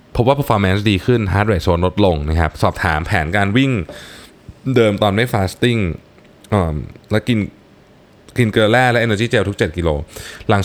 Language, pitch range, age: Thai, 85-115 Hz, 20-39